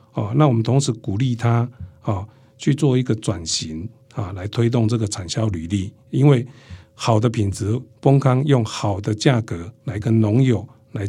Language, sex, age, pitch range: Chinese, male, 50-69, 110-130 Hz